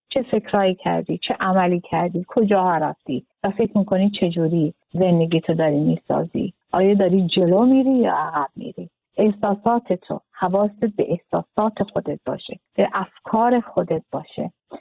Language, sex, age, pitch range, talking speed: Arabic, female, 50-69, 195-245 Hz, 135 wpm